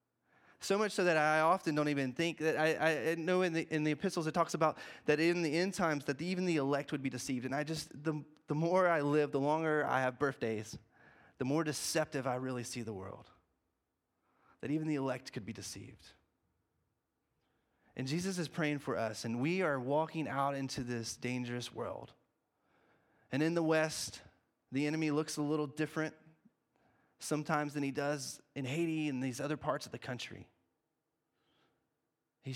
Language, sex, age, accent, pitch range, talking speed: English, male, 20-39, American, 125-155 Hz, 180 wpm